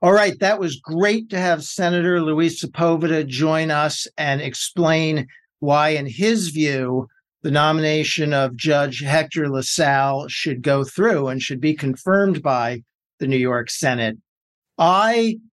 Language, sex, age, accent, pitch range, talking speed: English, male, 50-69, American, 135-170 Hz, 145 wpm